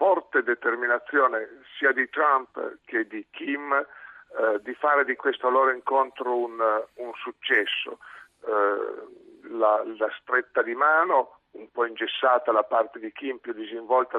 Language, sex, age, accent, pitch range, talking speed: Italian, male, 50-69, native, 115-150 Hz, 140 wpm